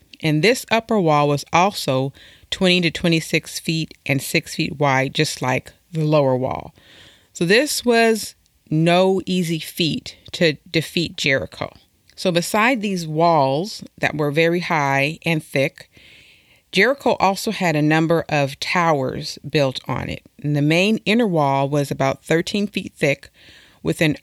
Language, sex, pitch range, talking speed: English, female, 145-175 Hz, 150 wpm